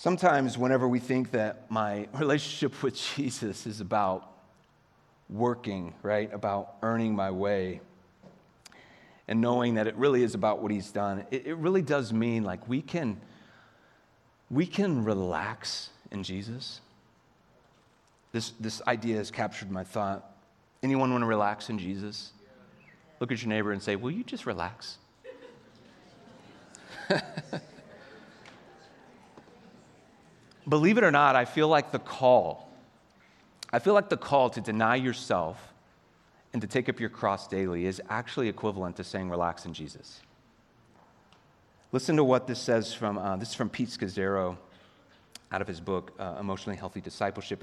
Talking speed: 145 wpm